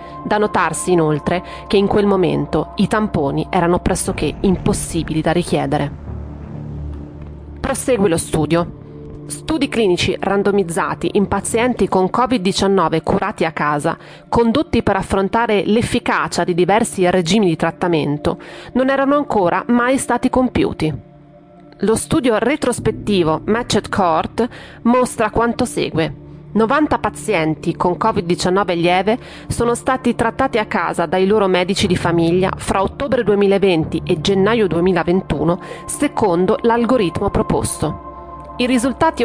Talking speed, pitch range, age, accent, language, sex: 115 wpm, 175-235 Hz, 30-49, native, Italian, female